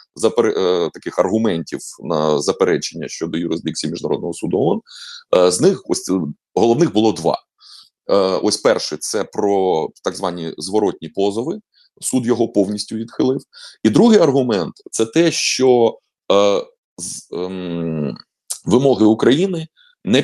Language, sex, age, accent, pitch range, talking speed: Ukrainian, male, 30-49, native, 105-170 Hz, 115 wpm